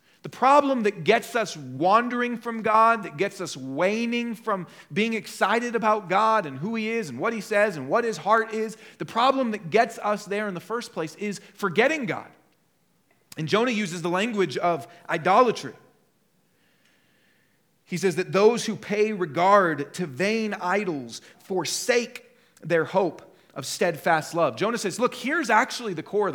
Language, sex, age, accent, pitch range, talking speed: English, male, 40-59, American, 170-225 Hz, 170 wpm